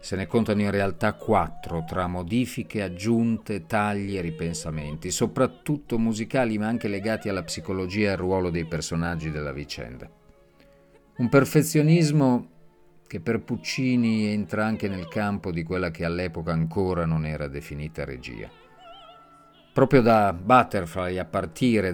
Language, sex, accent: Italian, male, native